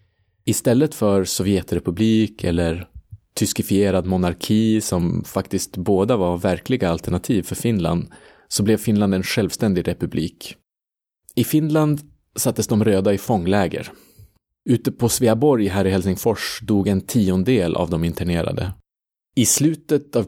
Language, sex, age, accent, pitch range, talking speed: Swedish, male, 30-49, Norwegian, 90-110 Hz, 125 wpm